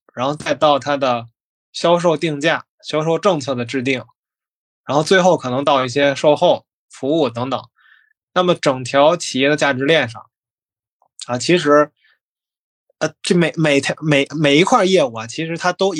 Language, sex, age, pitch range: Chinese, male, 20-39, 130-175 Hz